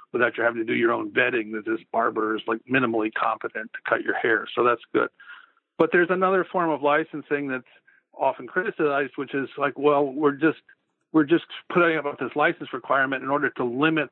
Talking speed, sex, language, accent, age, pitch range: 205 wpm, male, English, American, 50-69, 125-165 Hz